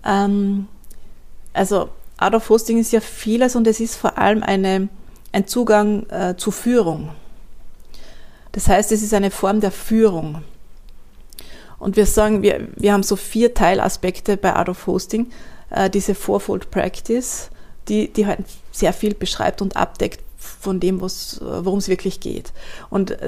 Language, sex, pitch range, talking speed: German, female, 185-215 Hz, 145 wpm